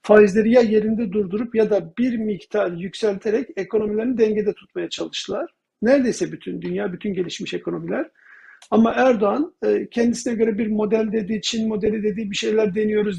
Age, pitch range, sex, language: 50-69, 200-230 Hz, male, Turkish